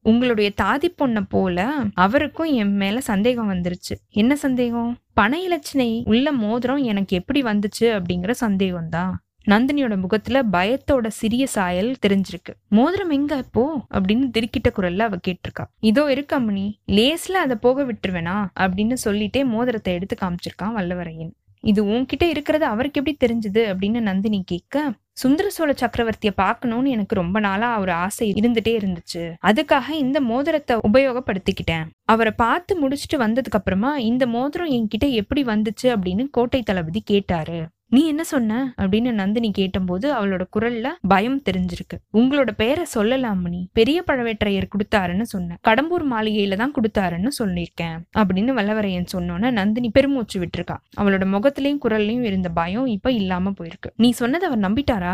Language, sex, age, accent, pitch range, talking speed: Tamil, female, 20-39, native, 195-260 Hz, 130 wpm